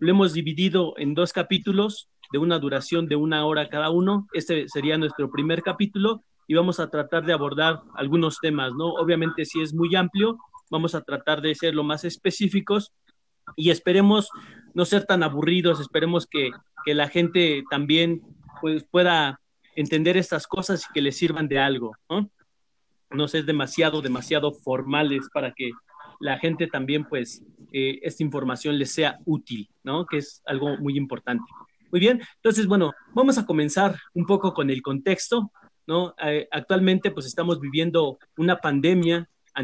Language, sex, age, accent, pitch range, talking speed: Spanish, male, 40-59, Mexican, 145-180 Hz, 165 wpm